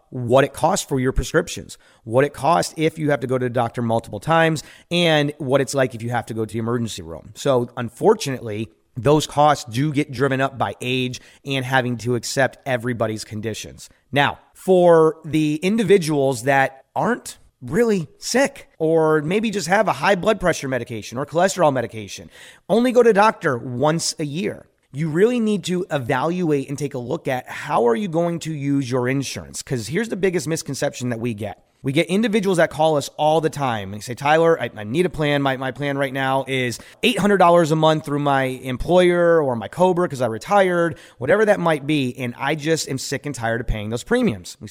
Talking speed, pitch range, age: 205 wpm, 125-165 Hz, 30-49